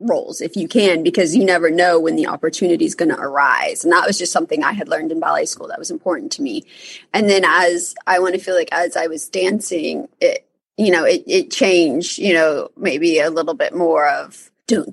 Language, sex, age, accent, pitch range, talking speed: English, female, 30-49, American, 180-235 Hz, 235 wpm